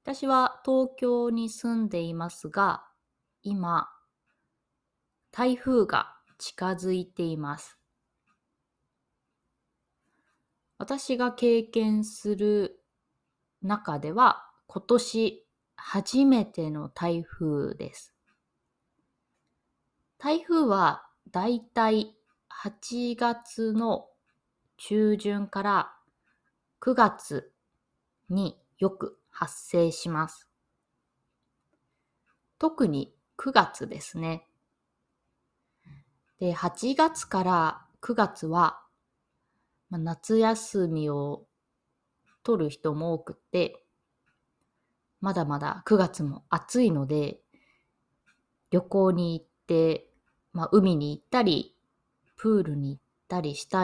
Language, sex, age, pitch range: Japanese, female, 20-39, 170-235 Hz